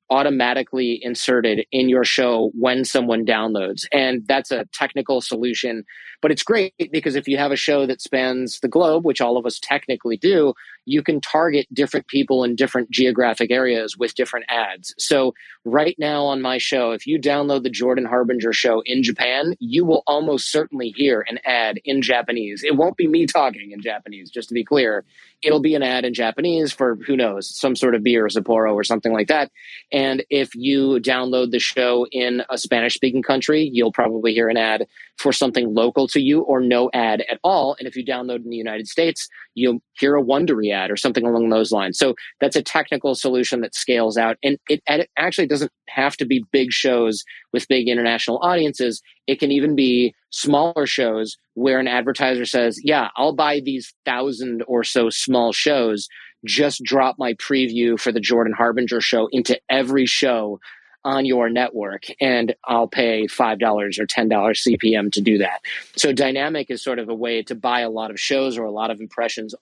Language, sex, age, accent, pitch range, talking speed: English, male, 30-49, American, 115-140 Hz, 195 wpm